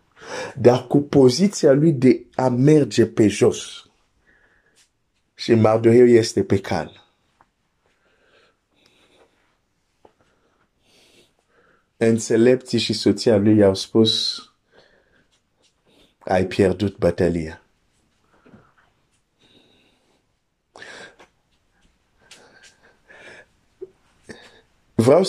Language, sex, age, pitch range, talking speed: Romanian, male, 50-69, 110-140 Hz, 55 wpm